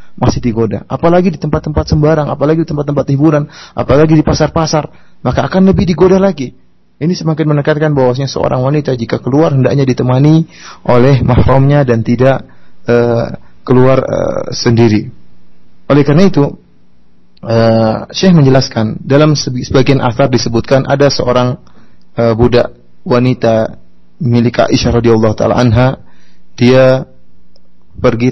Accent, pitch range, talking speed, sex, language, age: Indonesian, 115-150 Hz, 125 wpm, male, English, 30-49